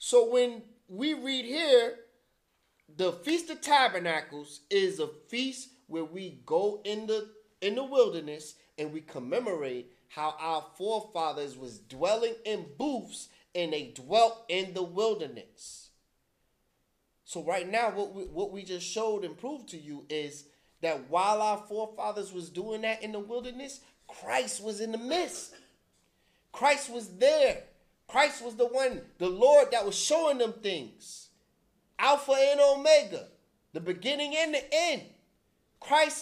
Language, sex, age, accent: English, male, 30-49, American